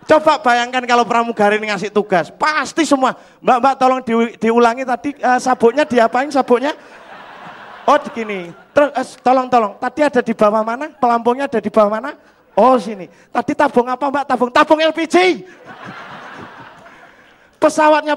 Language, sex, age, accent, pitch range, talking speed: Indonesian, male, 30-49, native, 200-290 Hz, 140 wpm